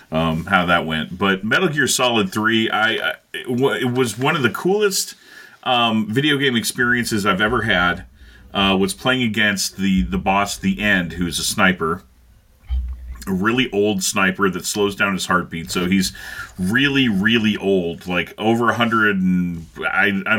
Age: 30-49